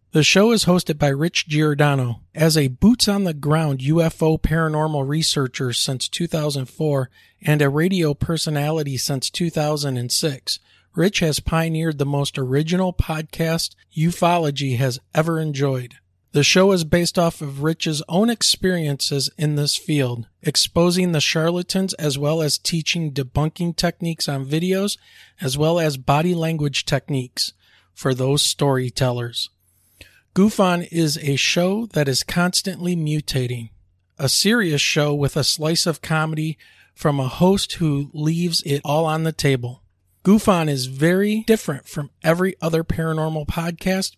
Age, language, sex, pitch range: 40-59, English, male, 140-170 Hz